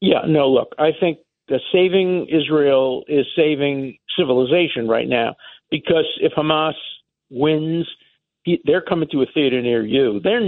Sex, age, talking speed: male, 50-69, 150 wpm